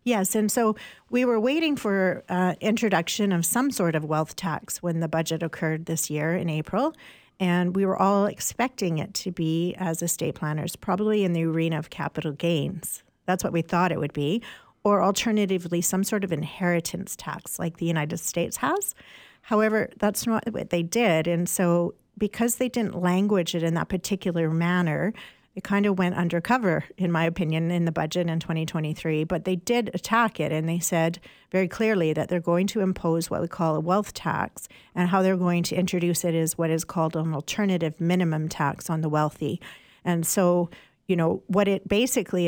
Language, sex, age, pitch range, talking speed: English, female, 50-69, 165-200 Hz, 190 wpm